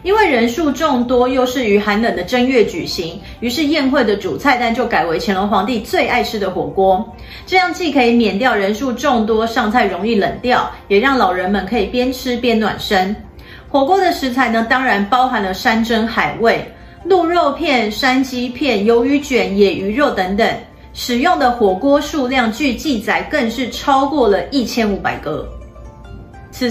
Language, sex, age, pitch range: Chinese, female, 30-49, 205-270 Hz